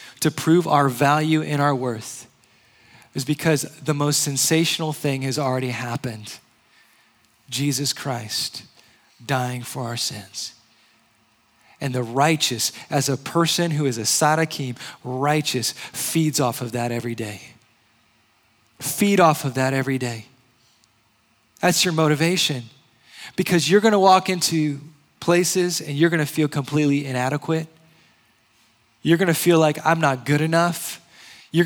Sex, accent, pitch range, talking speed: male, American, 115-165 Hz, 135 wpm